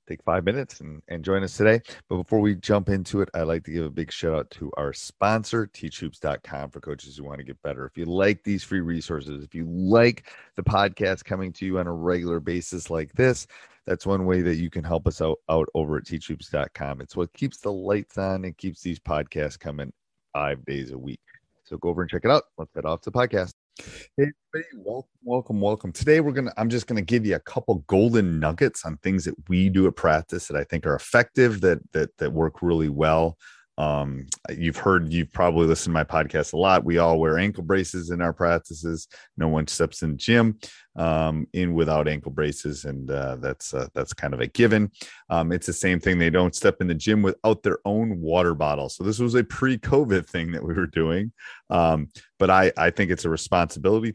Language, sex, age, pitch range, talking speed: English, male, 30-49, 80-100 Hz, 225 wpm